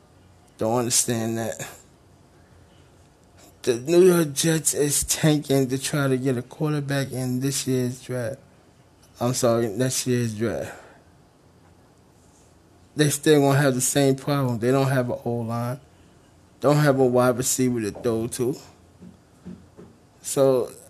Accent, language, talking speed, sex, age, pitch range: American, English, 130 wpm, male, 20-39, 115-135 Hz